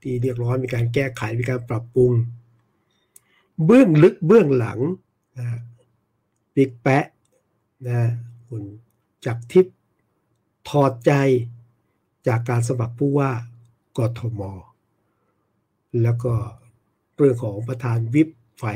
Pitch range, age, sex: 115-130 Hz, 60-79, male